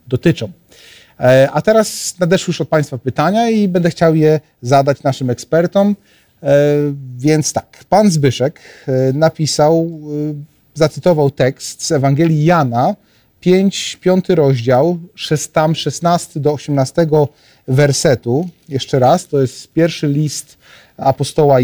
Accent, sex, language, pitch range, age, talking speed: native, male, Polish, 130-170 Hz, 40-59, 110 wpm